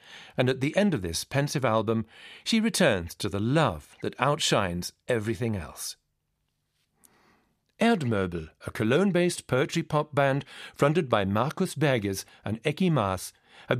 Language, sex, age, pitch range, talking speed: English, male, 50-69, 115-170 Hz, 130 wpm